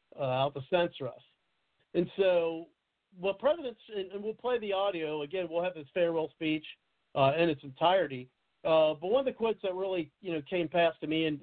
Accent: American